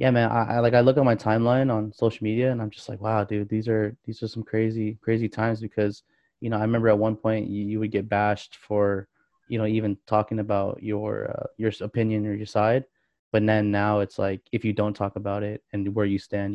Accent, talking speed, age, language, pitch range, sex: American, 245 wpm, 20-39, English, 105-120 Hz, male